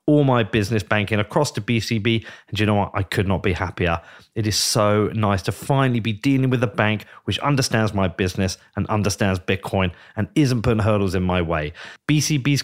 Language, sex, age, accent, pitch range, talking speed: English, male, 30-49, British, 105-135 Hz, 200 wpm